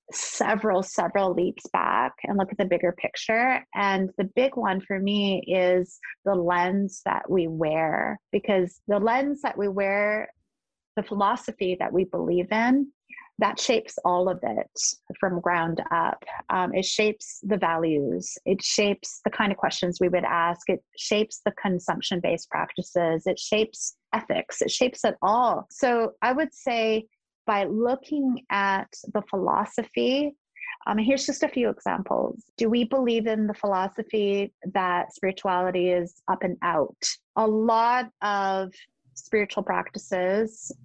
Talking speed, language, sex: 145 wpm, English, female